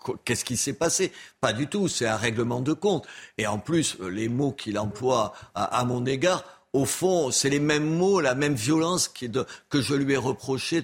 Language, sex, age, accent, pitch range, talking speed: French, male, 50-69, French, 120-165 Hz, 200 wpm